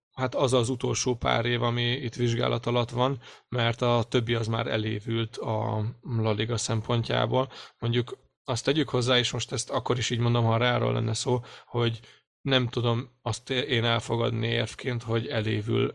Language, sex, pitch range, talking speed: Hungarian, male, 115-130 Hz, 165 wpm